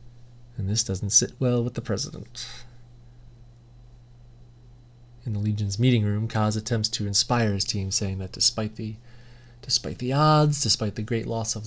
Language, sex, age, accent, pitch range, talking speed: English, male, 30-49, American, 110-125 Hz, 160 wpm